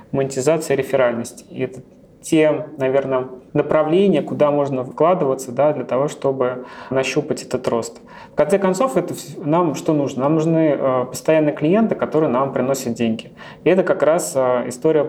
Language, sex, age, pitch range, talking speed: Russian, male, 30-49, 130-160 Hz, 150 wpm